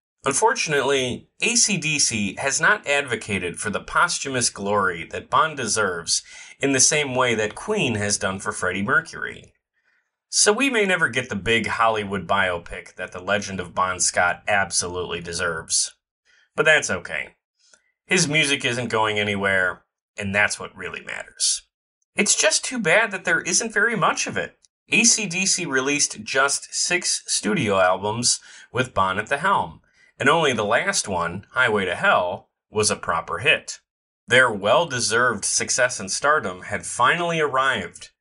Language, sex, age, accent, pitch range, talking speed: English, male, 30-49, American, 105-175 Hz, 150 wpm